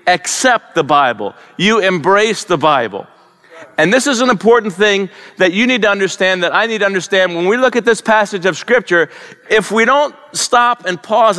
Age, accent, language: 50-69, American, English